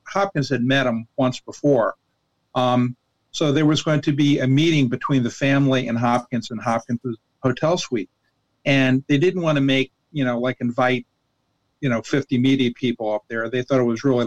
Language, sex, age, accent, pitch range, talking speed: English, male, 50-69, American, 120-140 Hz, 195 wpm